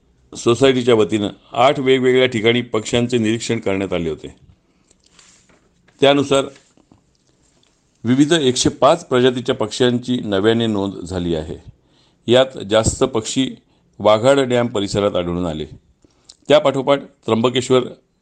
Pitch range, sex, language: 105-125 Hz, male, Marathi